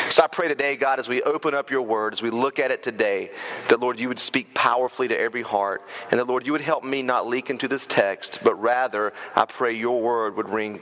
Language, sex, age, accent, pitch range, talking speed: English, male, 30-49, American, 135-205 Hz, 255 wpm